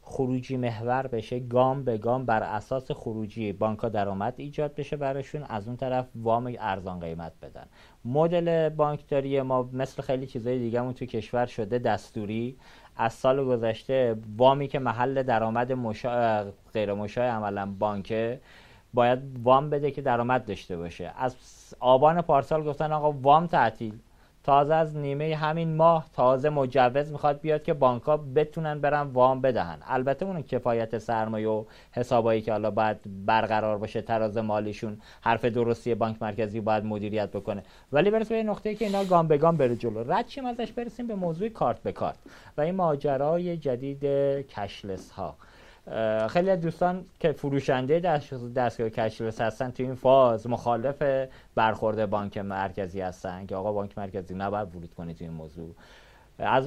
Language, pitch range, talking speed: Persian, 110-140 Hz, 150 wpm